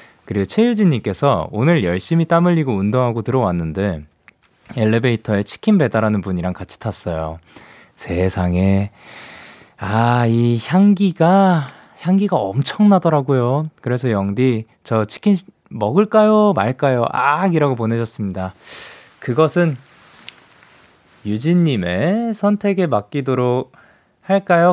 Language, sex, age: Korean, male, 20-39